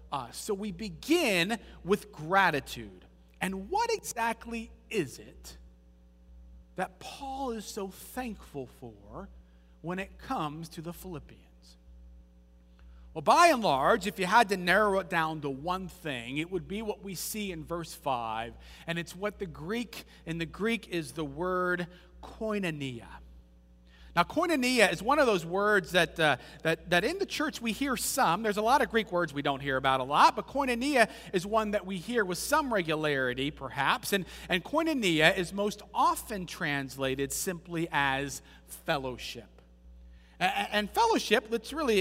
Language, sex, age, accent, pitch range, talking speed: English, male, 40-59, American, 145-215 Hz, 160 wpm